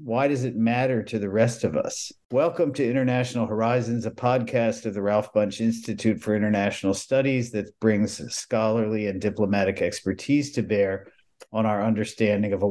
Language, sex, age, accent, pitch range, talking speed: English, male, 50-69, American, 100-115 Hz, 170 wpm